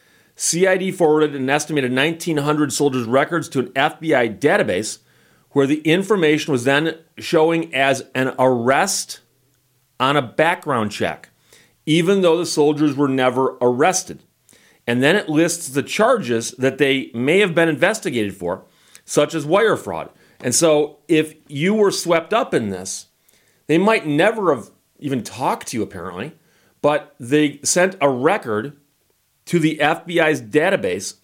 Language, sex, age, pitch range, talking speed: English, male, 40-59, 135-175 Hz, 145 wpm